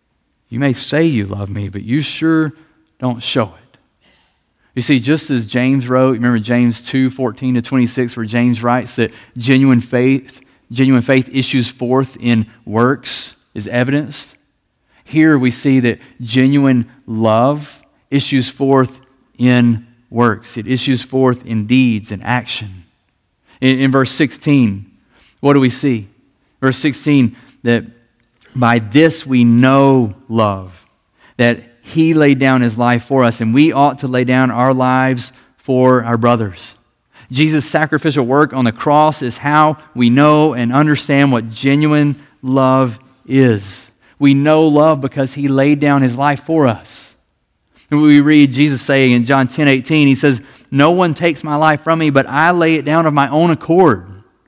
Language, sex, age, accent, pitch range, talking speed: English, male, 40-59, American, 120-145 Hz, 160 wpm